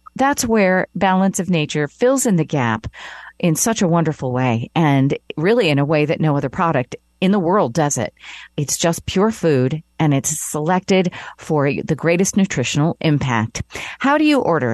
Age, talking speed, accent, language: 50-69, 180 wpm, American, English